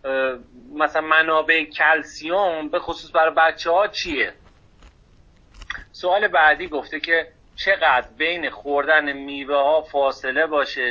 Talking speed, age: 110 wpm, 40-59